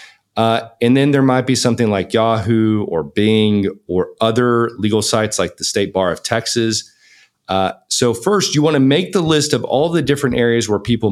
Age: 40-59